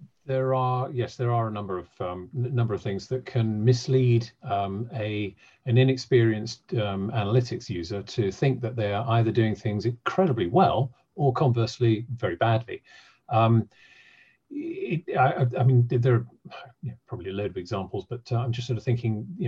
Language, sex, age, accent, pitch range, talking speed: English, male, 40-59, British, 115-135 Hz, 175 wpm